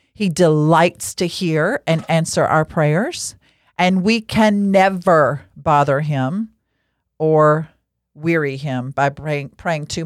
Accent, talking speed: American, 120 wpm